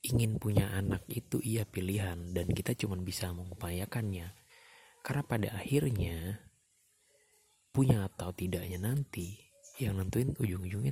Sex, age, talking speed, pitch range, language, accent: male, 30-49, 115 wpm, 95-120 Hz, Indonesian, native